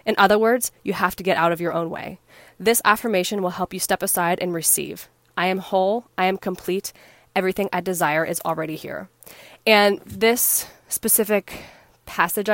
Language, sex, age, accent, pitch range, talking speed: English, female, 20-39, American, 180-215 Hz, 175 wpm